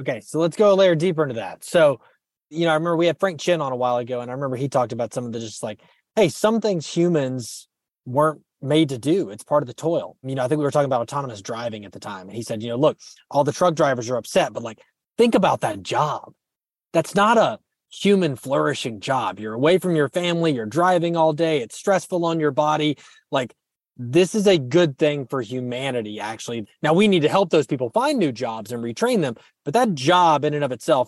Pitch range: 125-170 Hz